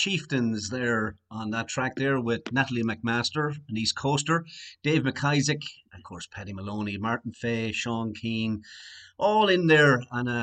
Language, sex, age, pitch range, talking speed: English, male, 30-49, 100-125 Hz, 160 wpm